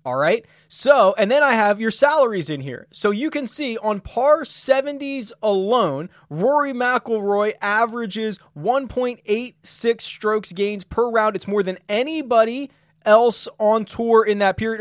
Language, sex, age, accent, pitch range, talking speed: English, male, 20-39, American, 185-255 Hz, 150 wpm